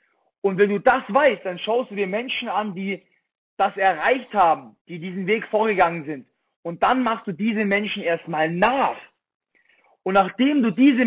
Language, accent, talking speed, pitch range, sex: German, German, 175 wpm, 195-255 Hz, male